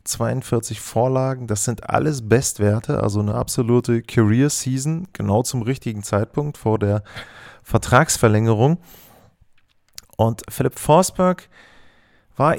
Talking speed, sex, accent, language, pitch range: 105 wpm, male, German, German, 110-130 Hz